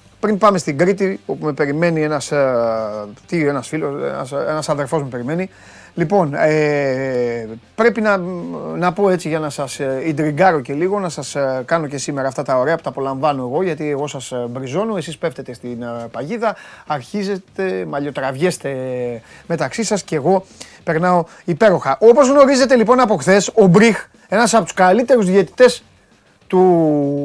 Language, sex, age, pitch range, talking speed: Greek, male, 30-49, 140-220 Hz, 155 wpm